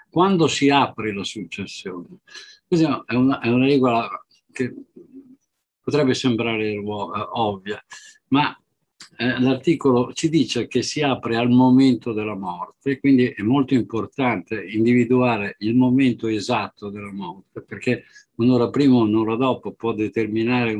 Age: 50-69